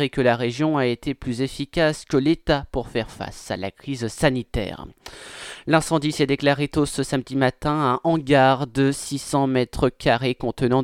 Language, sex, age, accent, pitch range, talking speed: French, male, 20-39, French, 115-140 Hz, 170 wpm